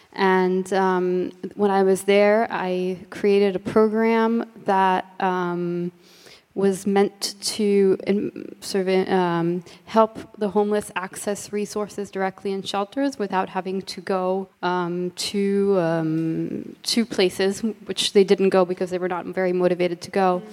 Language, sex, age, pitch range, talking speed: English, female, 20-39, 185-205 Hz, 135 wpm